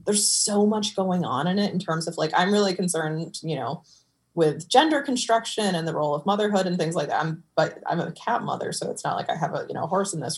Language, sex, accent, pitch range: English, female, American, 155-195 Hz